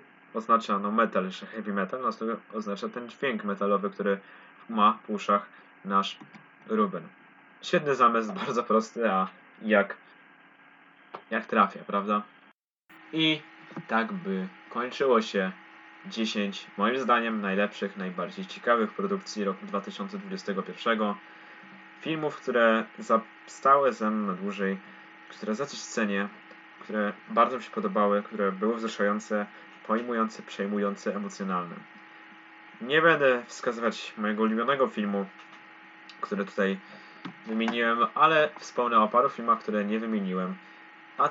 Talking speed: 115 wpm